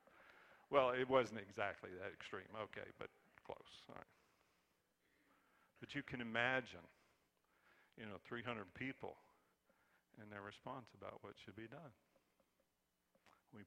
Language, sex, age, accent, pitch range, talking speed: English, male, 50-69, American, 95-115 Hz, 115 wpm